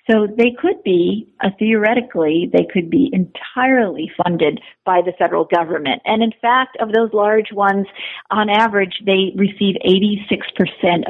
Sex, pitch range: female, 170-215 Hz